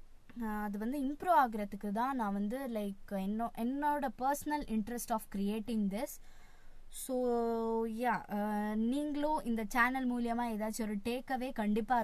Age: 20-39